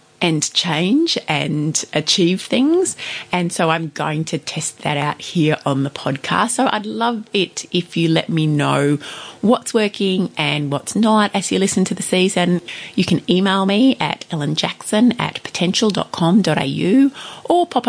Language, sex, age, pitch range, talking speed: English, female, 30-49, 160-230 Hz, 160 wpm